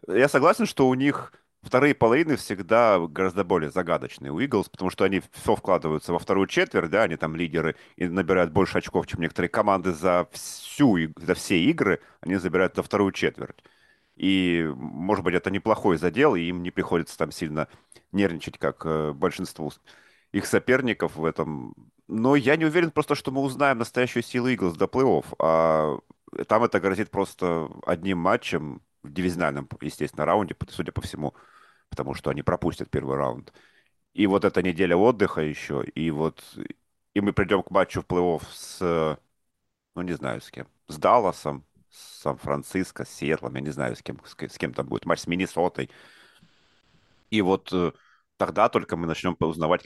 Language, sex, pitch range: Russian, male, 80-100 Hz